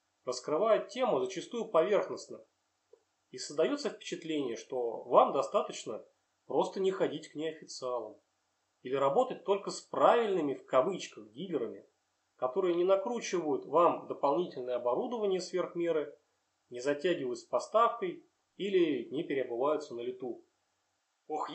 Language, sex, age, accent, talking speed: Russian, male, 30-49, native, 110 wpm